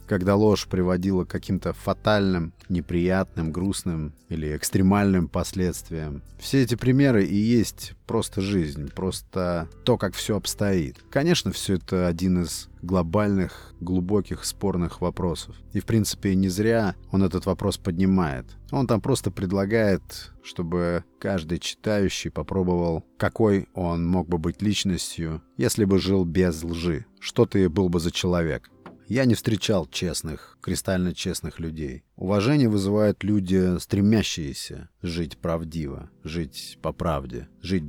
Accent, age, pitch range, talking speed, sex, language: native, 30-49, 85-100 Hz, 130 wpm, male, Russian